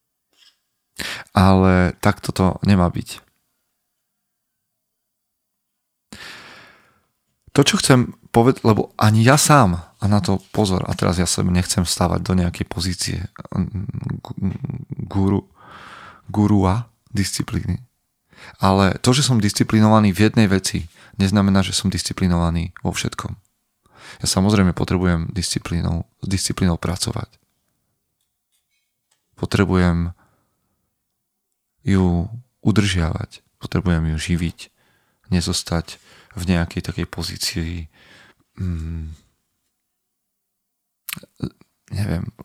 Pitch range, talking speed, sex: 90-110 Hz, 90 wpm, male